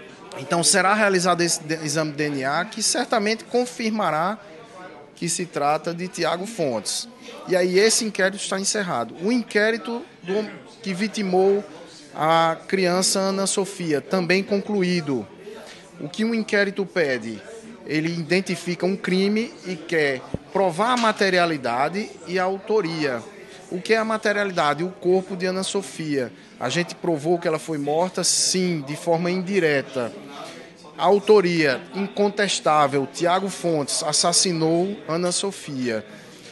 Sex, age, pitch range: male, 20-39, 155-195 Hz